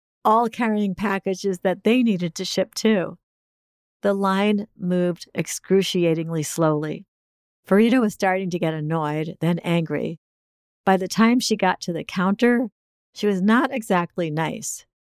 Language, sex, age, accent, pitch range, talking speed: English, female, 50-69, American, 160-195 Hz, 140 wpm